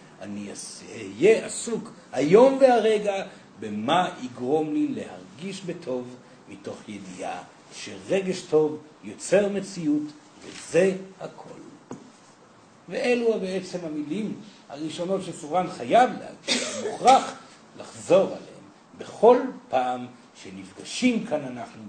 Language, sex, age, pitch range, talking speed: Hebrew, male, 60-79, 160-220 Hz, 90 wpm